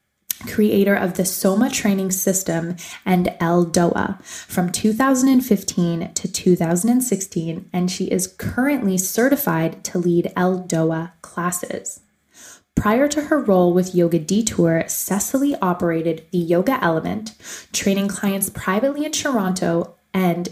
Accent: American